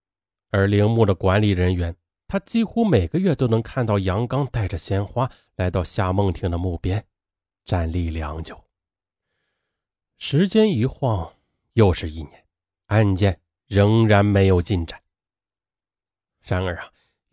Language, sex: Chinese, male